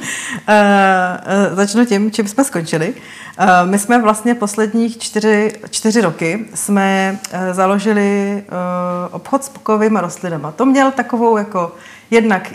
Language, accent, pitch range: Czech, native, 175-200 Hz